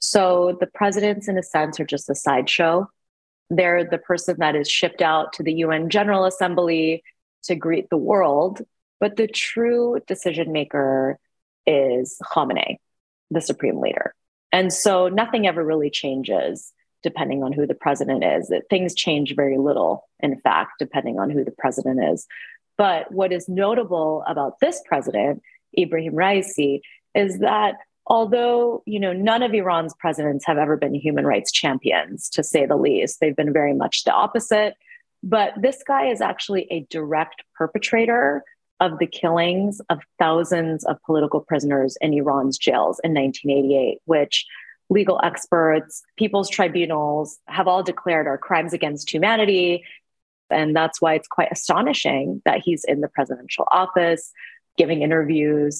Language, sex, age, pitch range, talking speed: English, female, 30-49, 155-195 Hz, 150 wpm